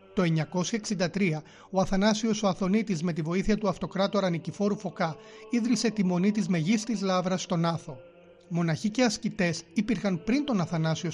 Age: 30-49